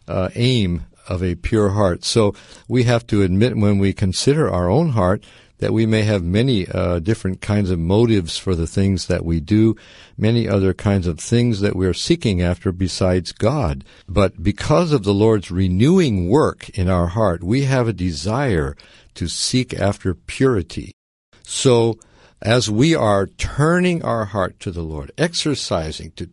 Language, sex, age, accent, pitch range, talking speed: English, male, 60-79, American, 90-120 Hz, 170 wpm